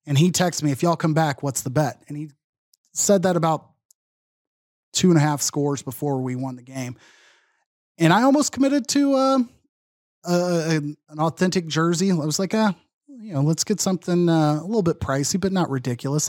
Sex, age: male, 30-49